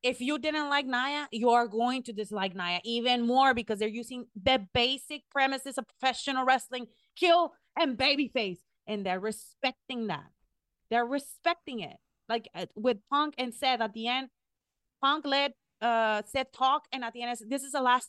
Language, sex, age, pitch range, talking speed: English, female, 30-49, 215-265 Hz, 180 wpm